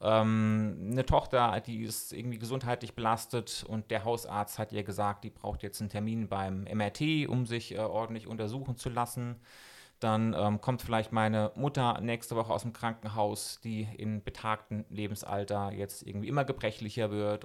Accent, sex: German, male